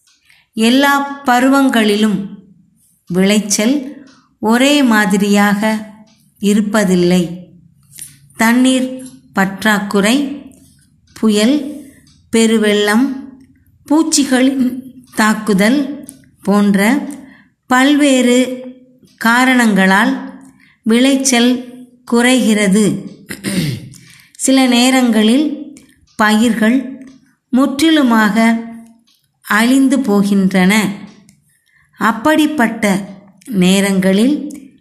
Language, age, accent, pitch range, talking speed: English, 20-39, Indian, 210-265 Hz, 45 wpm